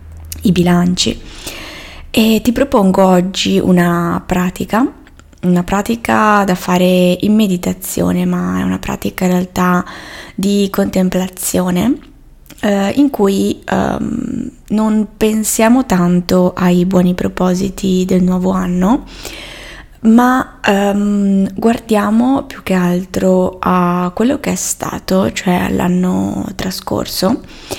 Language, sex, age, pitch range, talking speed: Italian, female, 20-39, 180-205 Hz, 105 wpm